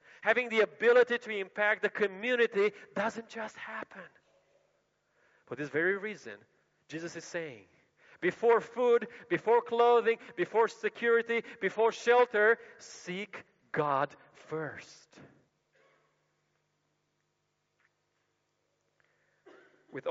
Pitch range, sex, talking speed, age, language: 150-210 Hz, male, 85 wpm, 40-59, English